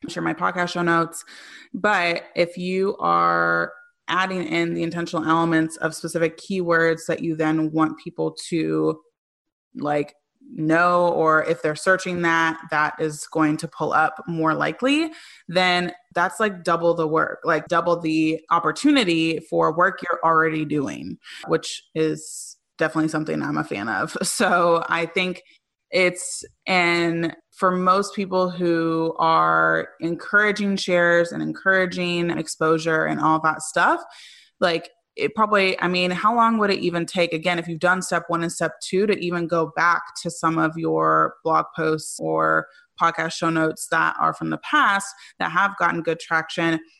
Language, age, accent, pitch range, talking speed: English, 20-39, American, 160-180 Hz, 160 wpm